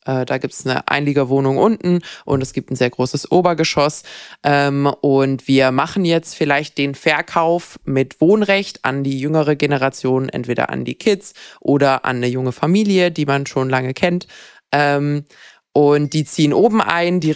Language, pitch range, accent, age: German, 135-160 Hz, German, 20-39